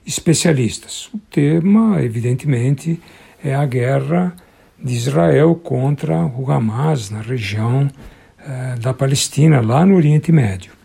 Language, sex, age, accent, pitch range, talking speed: Portuguese, male, 60-79, Brazilian, 130-175 Hz, 115 wpm